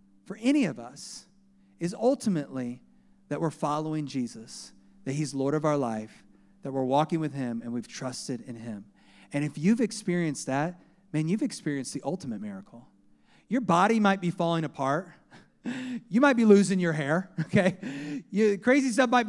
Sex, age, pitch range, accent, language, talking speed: male, 40-59, 150-225 Hz, American, English, 165 wpm